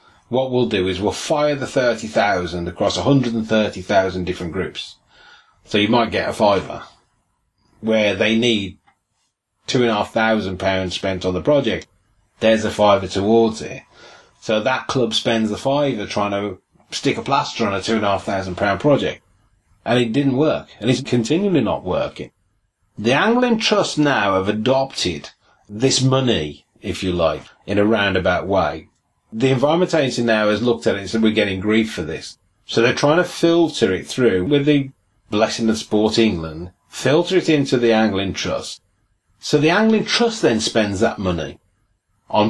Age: 30-49